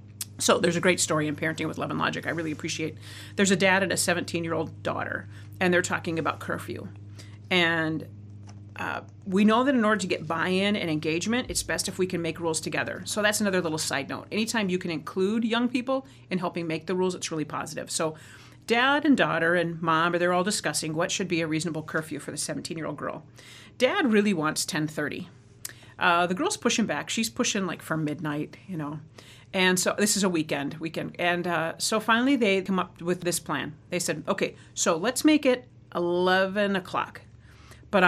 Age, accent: 40-59, American